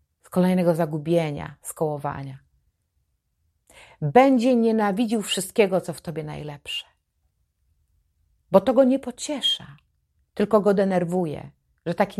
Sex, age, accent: female, 40-59, native